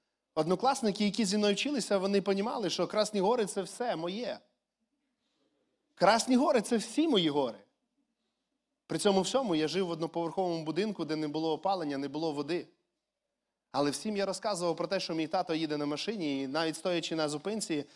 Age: 20-39